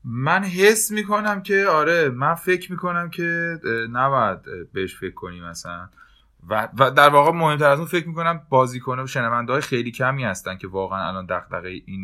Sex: male